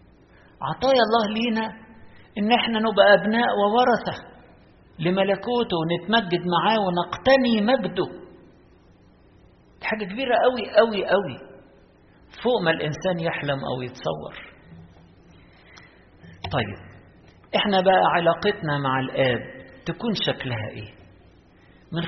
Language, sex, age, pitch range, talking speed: Arabic, male, 50-69, 125-180 Hz, 90 wpm